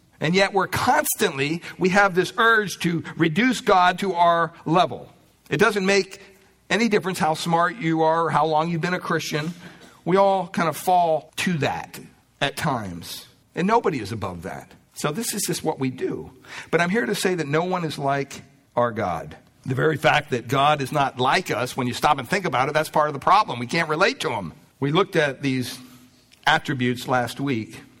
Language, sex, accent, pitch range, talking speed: English, male, American, 120-160 Hz, 205 wpm